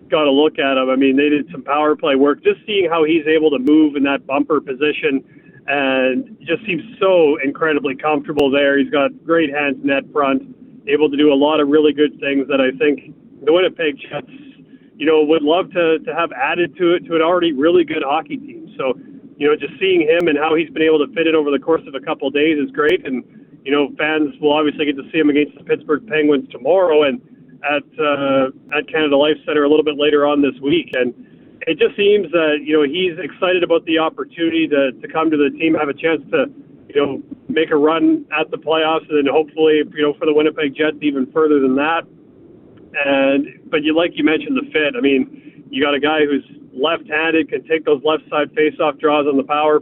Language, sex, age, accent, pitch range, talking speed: English, male, 30-49, American, 145-160 Hz, 230 wpm